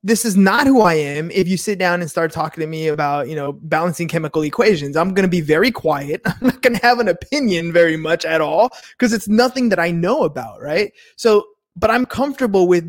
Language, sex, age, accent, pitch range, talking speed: English, male, 20-39, American, 165-205 Hz, 240 wpm